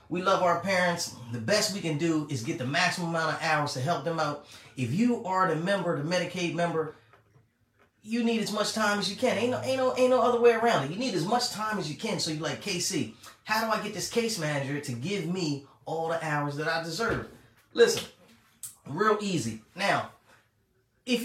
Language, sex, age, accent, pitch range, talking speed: English, male, 30-49, American, 145-210 Hz, 225 wpm